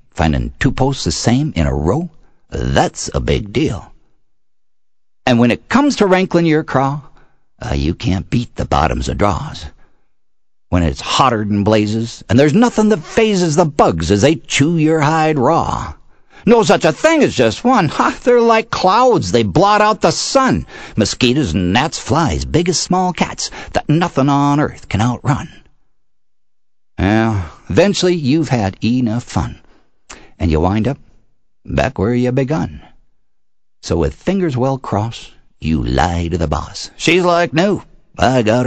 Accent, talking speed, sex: American, 165 wpm, male